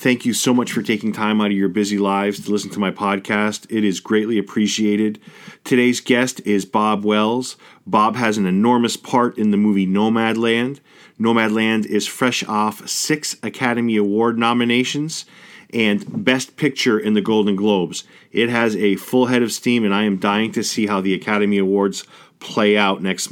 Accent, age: American, 40-59